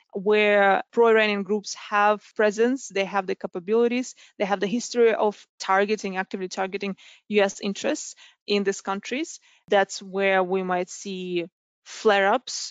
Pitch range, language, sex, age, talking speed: 190-215 Hz, English, female, 20-39, 130 wpm